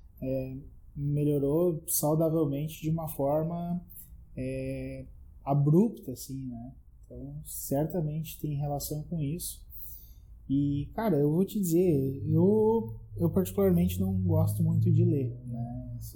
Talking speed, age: 120 wpm, 20-39